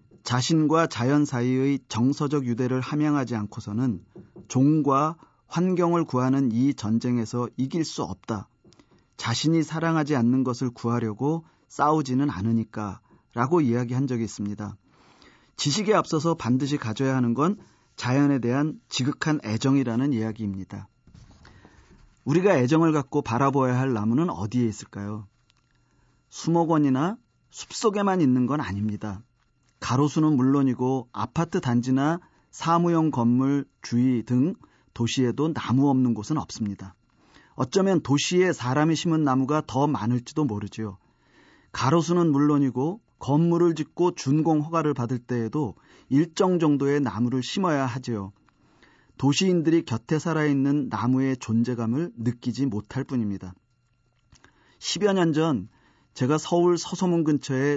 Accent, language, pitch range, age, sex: native, Korean, 120-155 Hz, 40-59, male